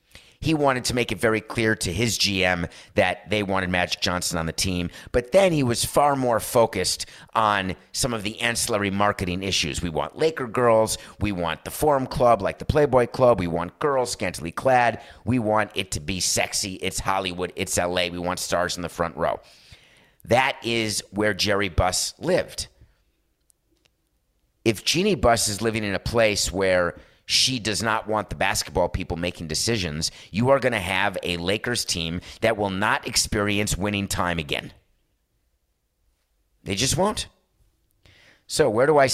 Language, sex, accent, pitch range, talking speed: English, male, American, 90-115 Hz, 175 wpm